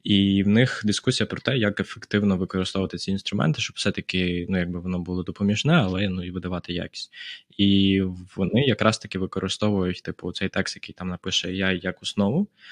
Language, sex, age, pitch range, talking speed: Ukrainian, male, 20-39, 90-100 Hz, 180 wpm